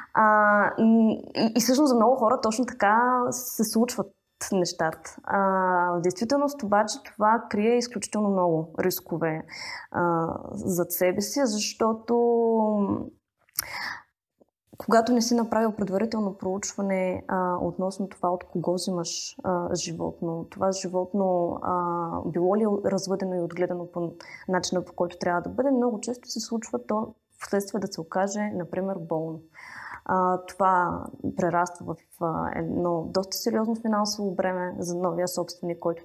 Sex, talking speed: female, 135 wpm